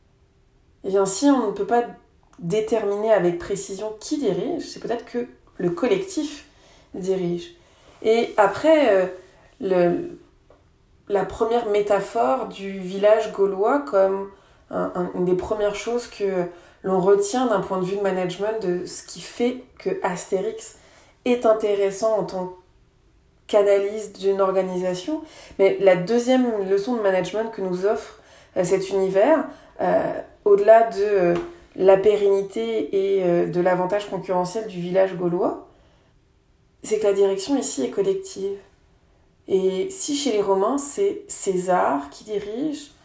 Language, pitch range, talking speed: French, 185-235 Hz, 135 wpm